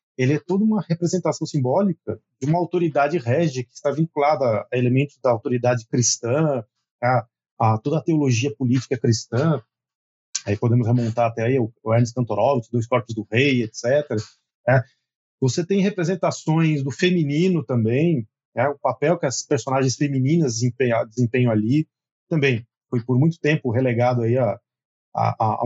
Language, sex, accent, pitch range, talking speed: Portuguese, male, Brazilian, 120-170 Hz, 145 wpm